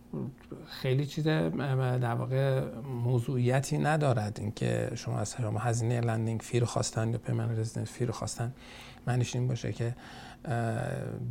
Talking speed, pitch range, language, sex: 110 wpm, 115-125 Hz, Persian, male